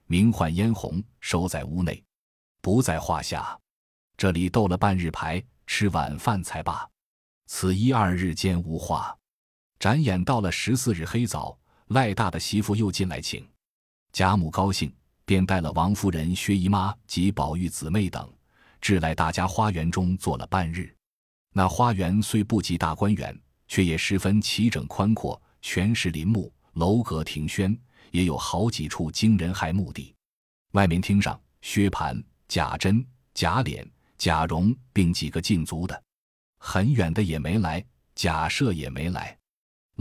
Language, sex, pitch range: Chinese, male, 80-105 Hz